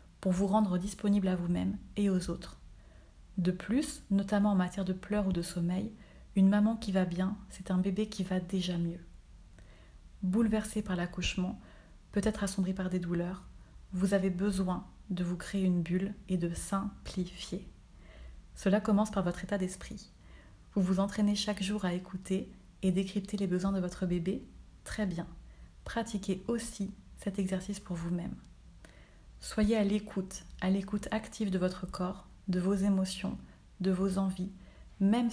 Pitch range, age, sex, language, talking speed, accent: 180-200 Hz, 30-49, female, French, 160 wpm, French